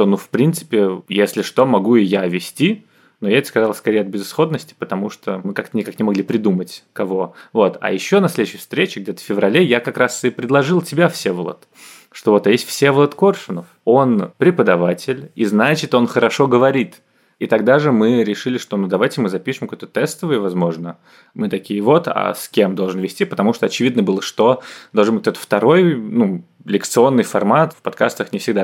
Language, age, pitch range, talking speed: Russian, 20-39, 95-125 Hz, 195 wpm